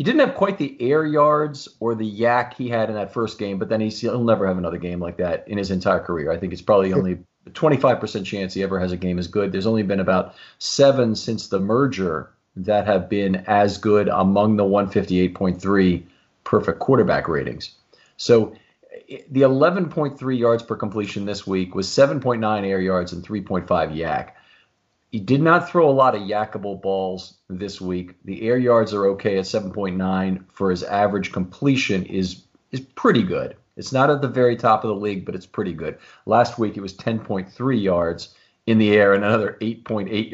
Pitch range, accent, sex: 95-125 Hz, American, male